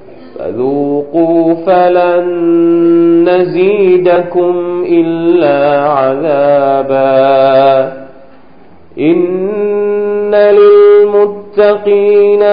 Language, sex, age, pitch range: Thai, male, 40-59, 145-205 Hz